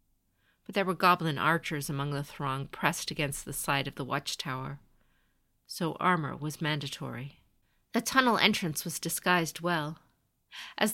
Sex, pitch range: female, 145-185 Hz